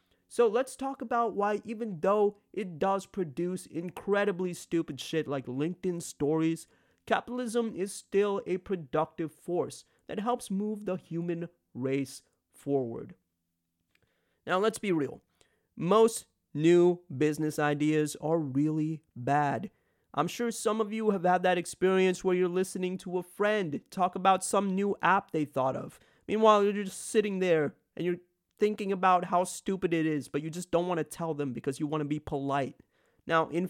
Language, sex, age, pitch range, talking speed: English, male, 30-49, 160-215 Hz, 165 wpm